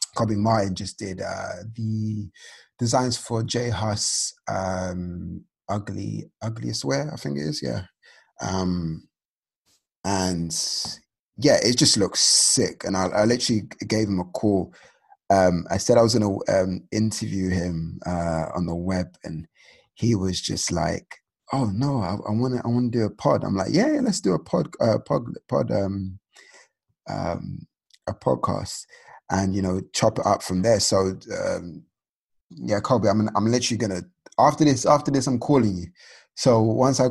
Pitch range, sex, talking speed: 90-115 Hz, male, 170 wpm